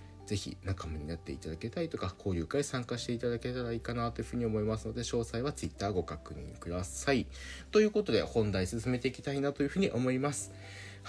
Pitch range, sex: 90-130 Hz, male